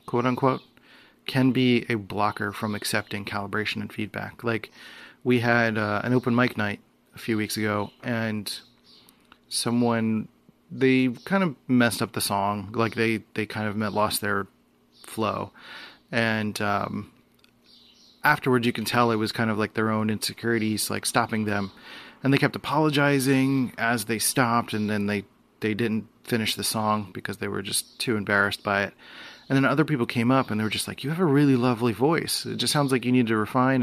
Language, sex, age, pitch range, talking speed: English, male, 30-49, 105-125 Hz, 185 wpm